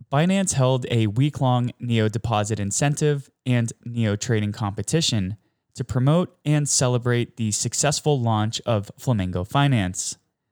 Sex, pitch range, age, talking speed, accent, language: male, 110-145 Hz, 20-39, 120 wpm, American, English